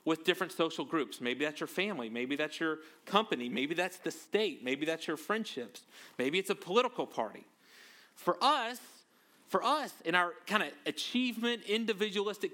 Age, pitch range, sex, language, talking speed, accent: 40-59, 160-215 Hz, male, English, 165 wpm, American